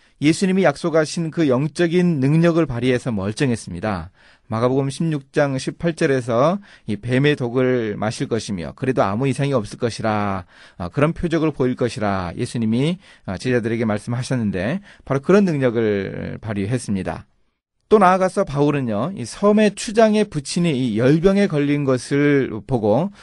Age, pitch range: 30-49, 115-165 Hz